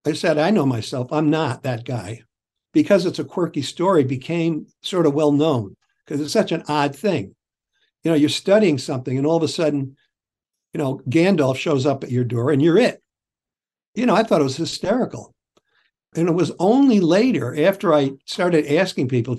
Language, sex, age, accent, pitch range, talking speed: English, male, 60-79, American, 140-175 Hz, 190 wpm